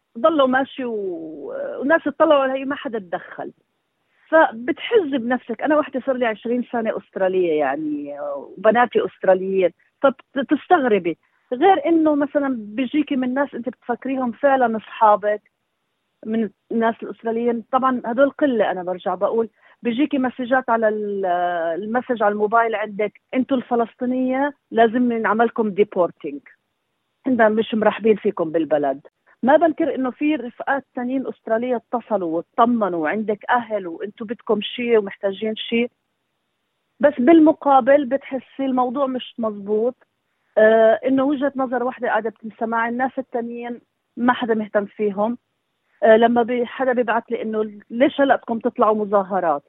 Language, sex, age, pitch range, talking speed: Arabic, female, 40-59, 215-265 Hz, 125 wpm